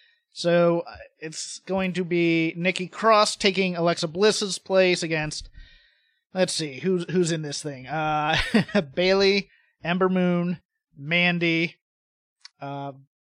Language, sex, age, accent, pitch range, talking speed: English, male, 30-49, American, 160-210 Hz, 115 wpm